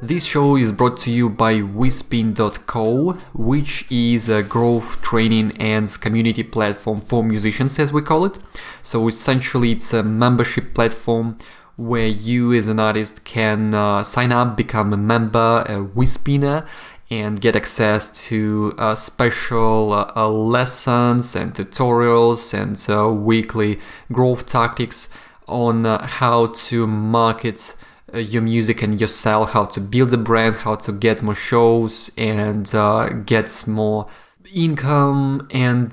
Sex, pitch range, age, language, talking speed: male, 110-125 Hz, 20-39, English, 140 wpm